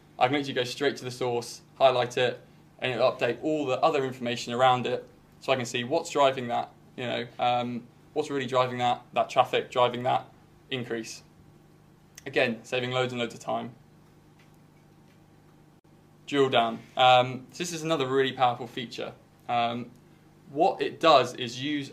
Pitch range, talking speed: 125-145 Hz, 165 wpm